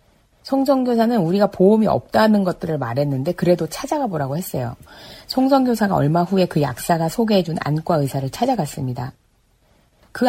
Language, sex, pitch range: Korean, female, 150-210 Hz